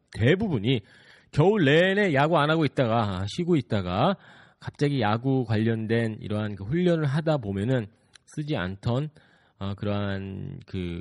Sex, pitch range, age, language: male, 100-155 Hz, 40-59, Korean